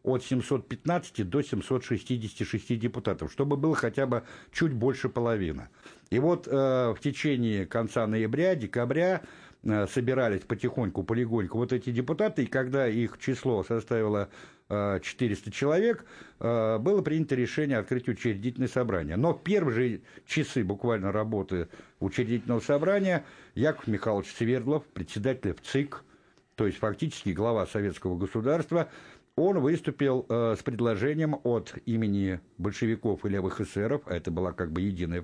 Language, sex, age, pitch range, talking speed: Russian, male, 60-79, 110-140 Hz, 135 wpm